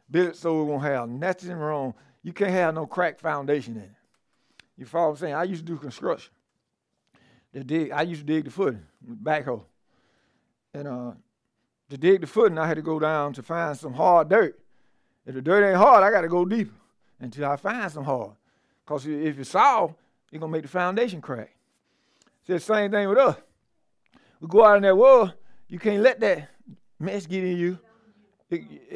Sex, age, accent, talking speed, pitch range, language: male, 50-69, American, 205 wpm, 150-215 Hz, English